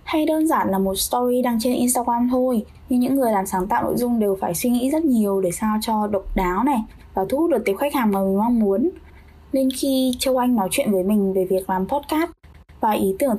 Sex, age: female, 10-29